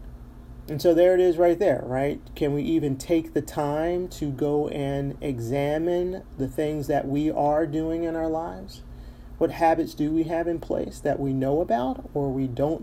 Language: English